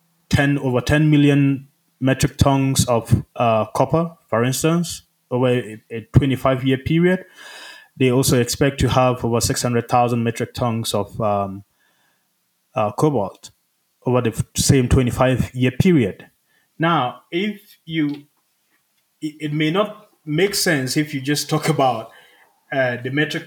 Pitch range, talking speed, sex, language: 125-150 Hz, 140 wpm, male, English